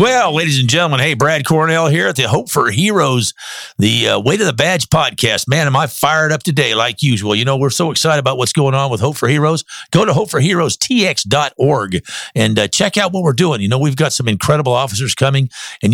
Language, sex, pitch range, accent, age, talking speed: English, male, 110-145 Hz, American, 50-69, 225 wpm